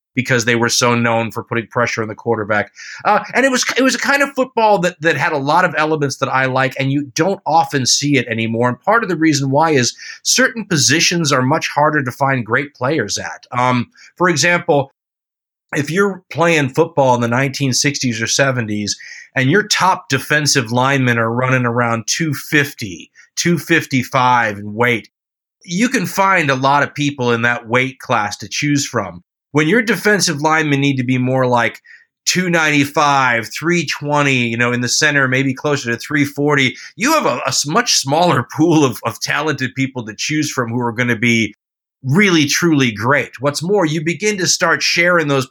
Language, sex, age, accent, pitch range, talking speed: English, male, 30-49, American, 120-160 Hz, 185 wpm